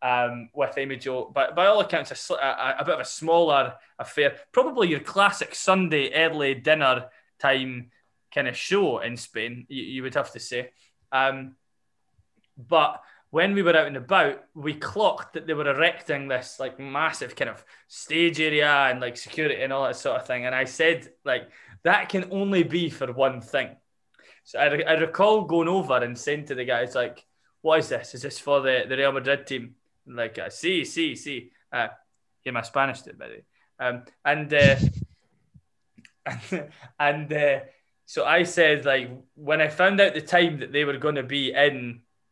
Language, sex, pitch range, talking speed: English, male, 130-160 Hz, 180 wpm